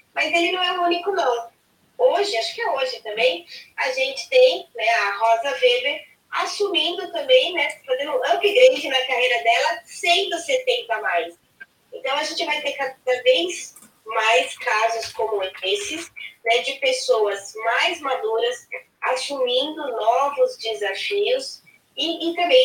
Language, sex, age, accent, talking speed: Portuguese, female, 20-39, Brazilian, 145 wpm